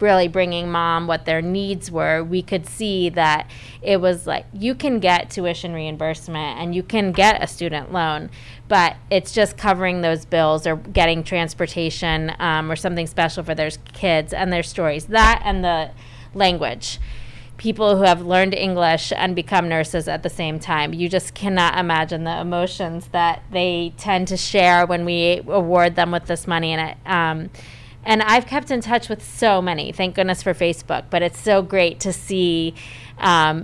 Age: 20-39